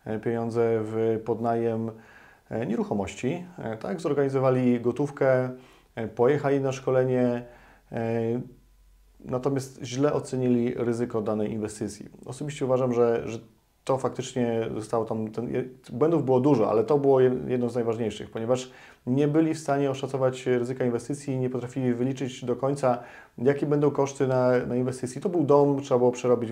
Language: Polish